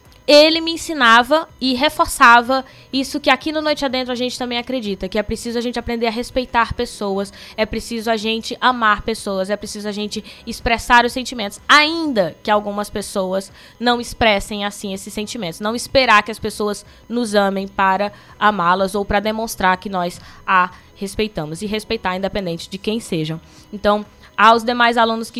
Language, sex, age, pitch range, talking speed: Portuguese, female, 10-29, 195-240 Hz, 175 wpm